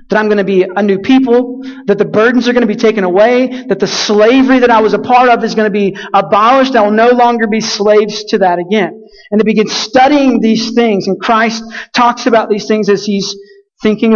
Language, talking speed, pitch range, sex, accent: English, 235 wpm, 200-250 Hz, male, American